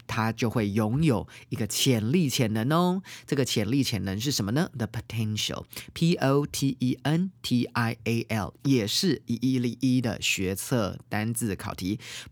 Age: 30-49